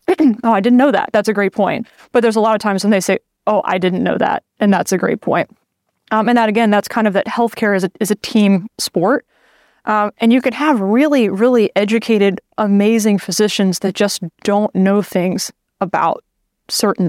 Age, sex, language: 20-39, female, English